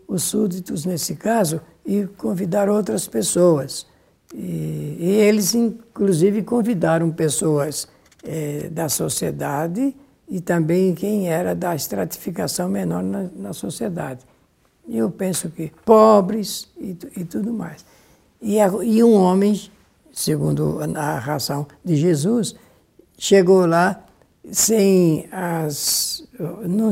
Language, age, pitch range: Portuguese, 60-79, 155-205 Hz